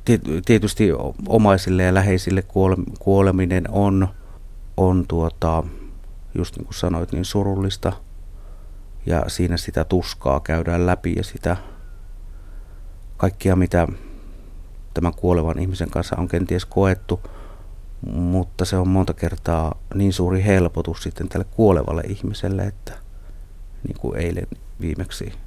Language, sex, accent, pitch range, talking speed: Finnish, male, native, 85-100 Hz, 110 wpm